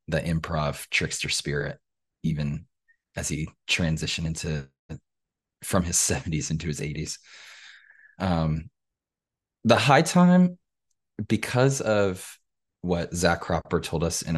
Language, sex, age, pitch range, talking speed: English, male, 20-39, 75-95 Hz, 115 wpm